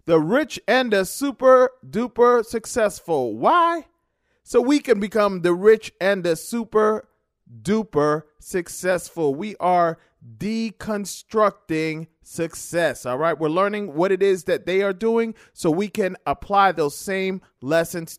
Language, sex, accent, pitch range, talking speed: English, male, American, 165-215 Hz, 130 wpm